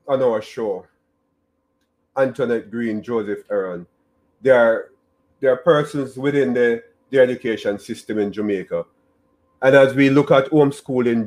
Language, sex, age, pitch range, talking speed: English, male, 40-59, 110-150 Hz, 135 wpm